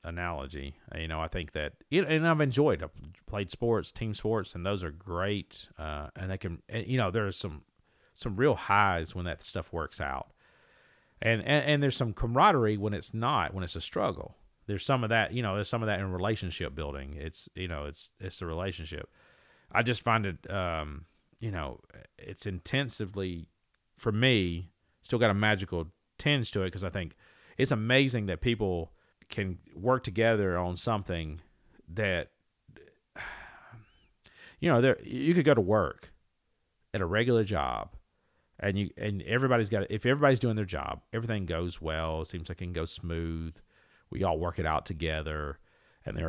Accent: American